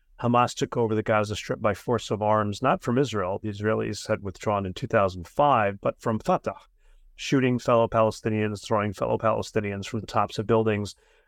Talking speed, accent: 175 wpm, American